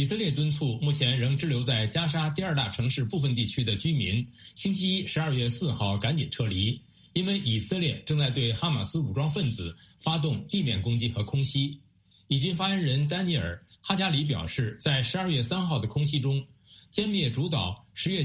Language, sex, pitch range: Chinese, male, 120-160 Hz